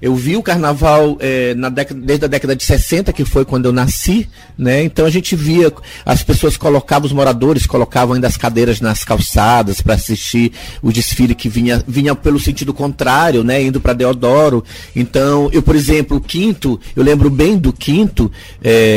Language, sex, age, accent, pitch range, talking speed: Portuguese, male, 30-49, Brazilian, 120-155 Hz, 185 wpm